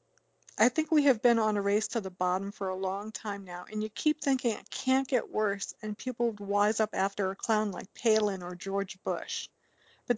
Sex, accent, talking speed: female, American, 220 wpm